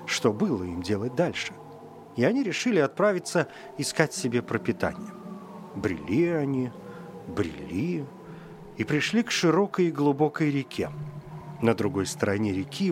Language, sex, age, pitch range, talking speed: Russian, male, 40-59, 115-175 Hz, 120 wpm